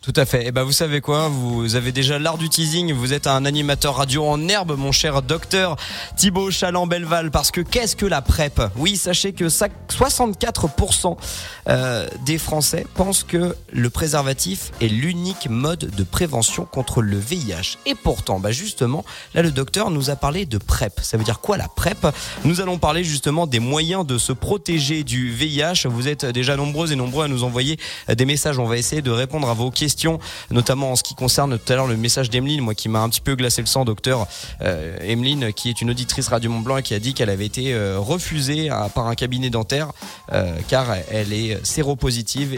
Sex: male